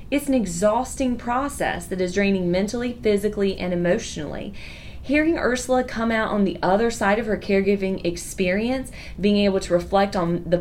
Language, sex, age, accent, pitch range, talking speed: English, female, 30-49, American, 185-235 Hz, 165 wpm